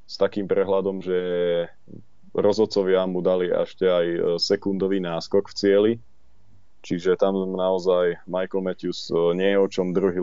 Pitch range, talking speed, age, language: 95-100 Hz, 135 wpm, 20-39, Slovak